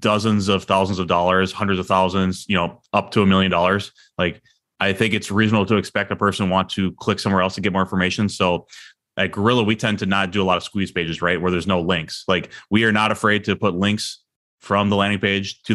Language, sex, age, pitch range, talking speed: English, male, 20-39, 90-105 Hz, 245 wpm